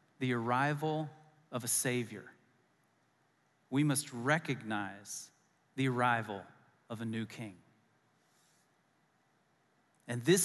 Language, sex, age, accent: English, male, 40-59, American